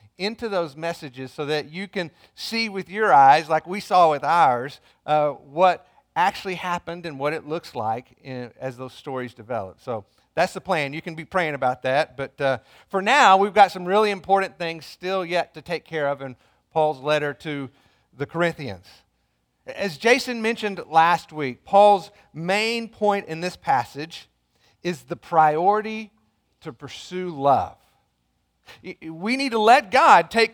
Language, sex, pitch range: English, male, 140-200 Hz